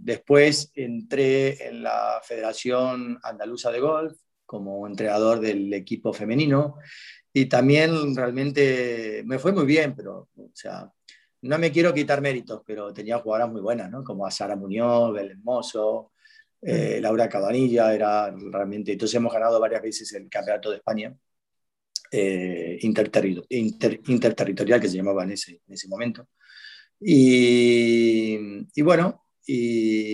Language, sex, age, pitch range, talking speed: Spanish, male, 30-49, 105-125 Hz, 140 wpm